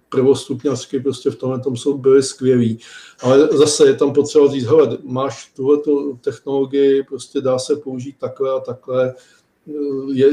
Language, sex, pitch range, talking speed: Czech, male, 125-135 Hz, 140 wpm